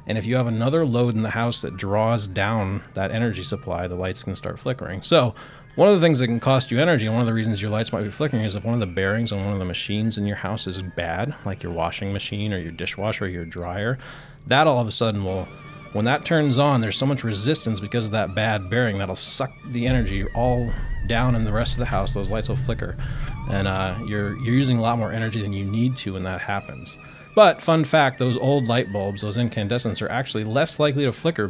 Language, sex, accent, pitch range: English, male, American, 100-130 Hz